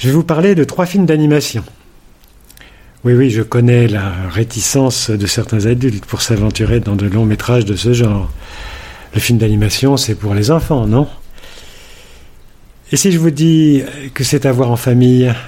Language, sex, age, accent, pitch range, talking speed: French, male, 50-69, French, 105-145 Hz, 175 wpm